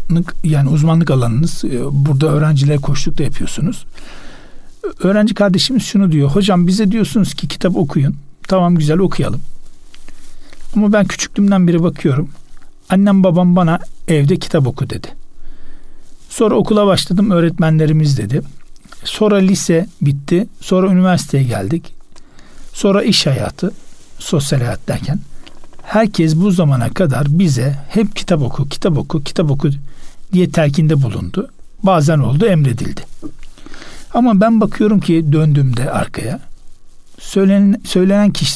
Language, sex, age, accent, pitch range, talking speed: Turkish, male, 60-79, native, 145-195 Hz, 120 wpm